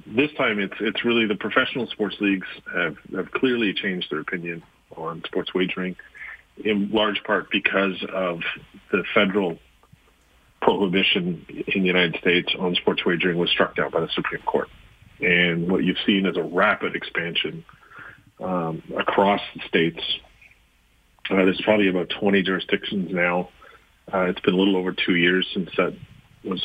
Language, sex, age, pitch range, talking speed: English, male, 40-59, 90-100 Hz, 160 wpm